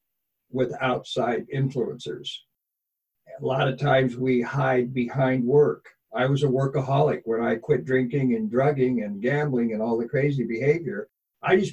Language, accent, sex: English, American, male